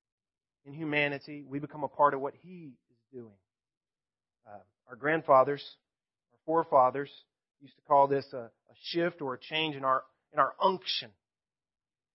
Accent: American